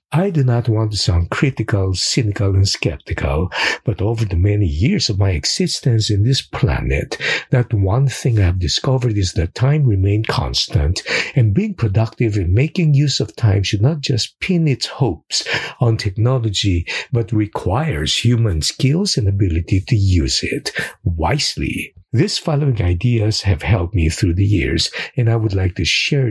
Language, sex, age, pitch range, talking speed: English, male, 50-69, 95-125 Hz, 165 wpm